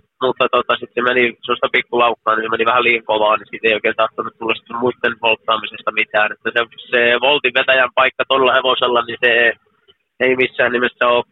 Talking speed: 195 wpm